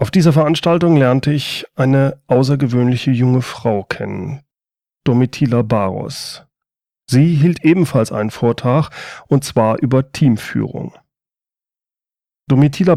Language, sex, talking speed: German, male, 100 wpm